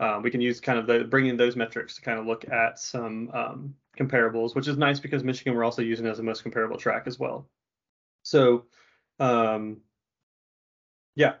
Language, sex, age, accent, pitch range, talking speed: English, male, 20-39, American, 120-135 Hz, 190 wpm